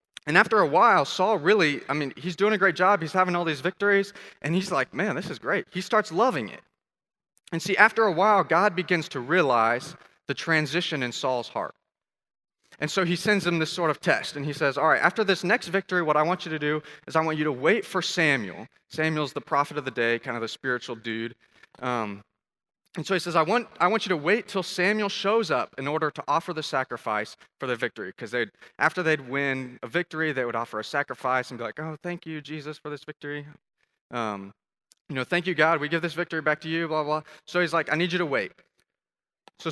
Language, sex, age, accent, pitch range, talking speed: English, male, 20-39, American, 145-180 Hz, 235 wpm